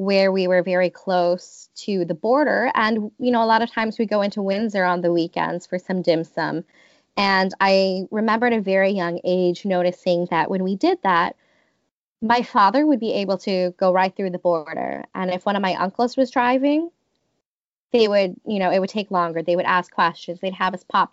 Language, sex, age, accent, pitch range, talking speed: English, female, 20-39, American, 175-220 Hz, 215 wpm